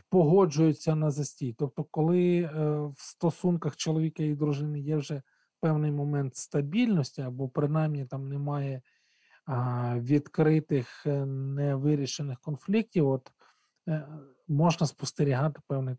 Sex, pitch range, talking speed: male, 135-165 Hz, 115 wpm